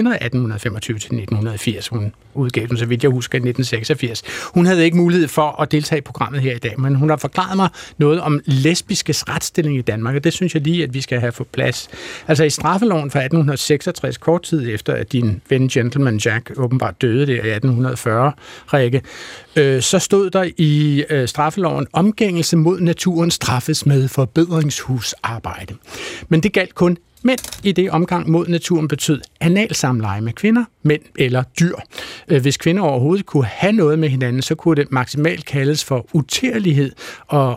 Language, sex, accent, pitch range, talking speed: Danish, male, native, 125-165 Hz, 175 wpm